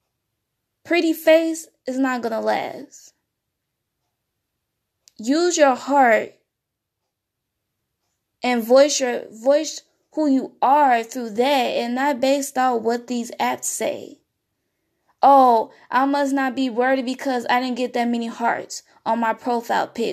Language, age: English, 10-29